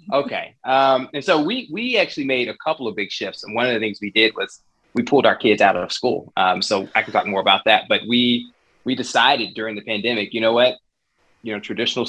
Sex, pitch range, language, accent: male, 105-130 Hz, English, American